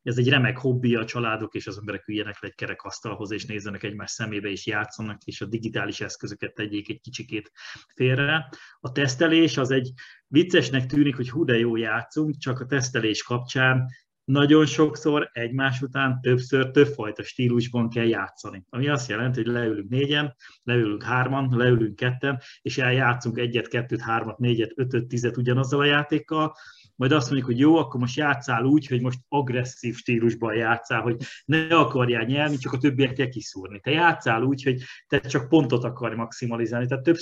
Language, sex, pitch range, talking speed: Hungarian, male, 115-140 Hz, 170 wpm